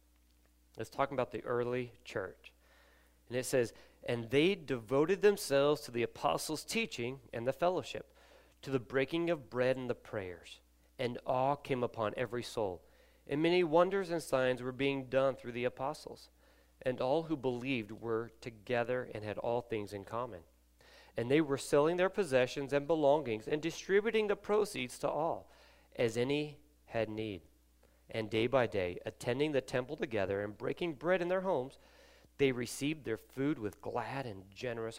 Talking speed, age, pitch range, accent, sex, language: 165 wpm, 40-59, 105-150 Hz, American, male, English